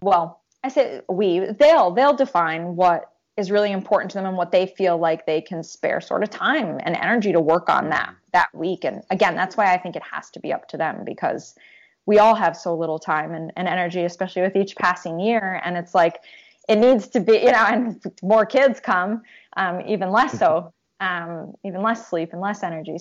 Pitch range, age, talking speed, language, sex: 175-215 Hz, 20-39, 220 wpm, English, female